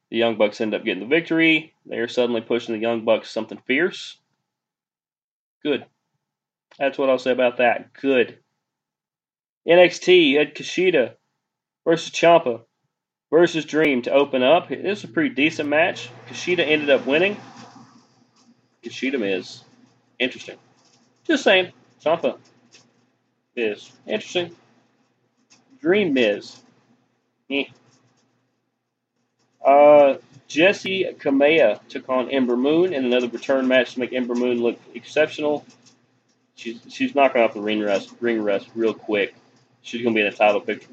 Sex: male